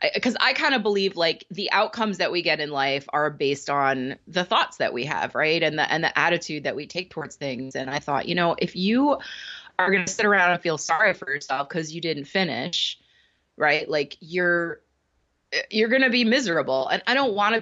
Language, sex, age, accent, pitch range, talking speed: English, female, 30-49, American, 155-215 Hz, 225 wpm